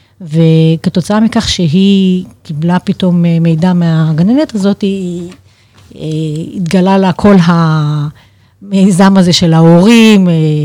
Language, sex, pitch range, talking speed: Hebrew, female, 160-190 Hz, 95 wpm